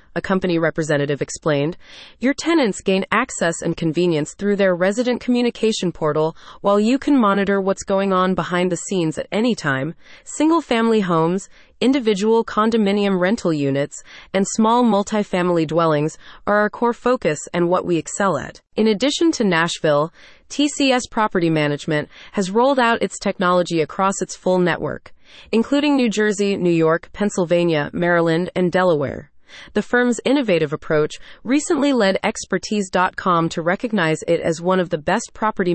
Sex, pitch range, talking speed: female, 165-225 Hz, 150 wpm